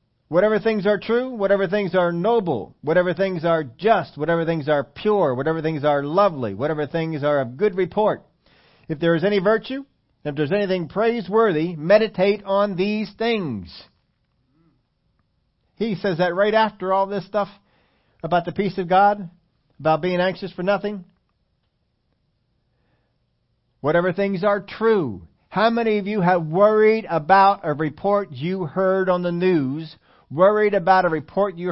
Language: English